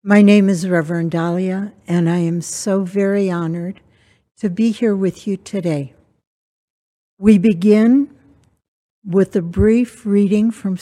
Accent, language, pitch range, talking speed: American, English, 185-225 Hz, 135 wpm